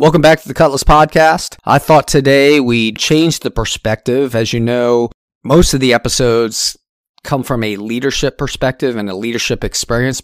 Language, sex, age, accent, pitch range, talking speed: English, male, 40-59, American, 105-130 Hz, 170 wpm